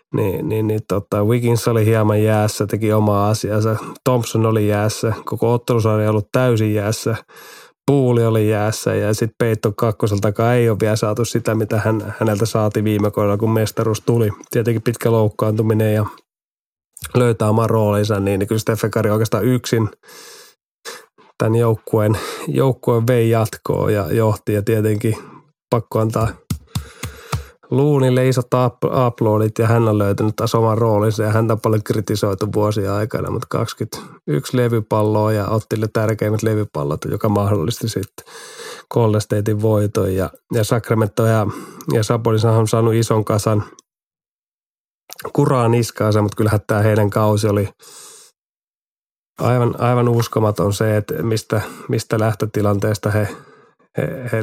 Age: 30-49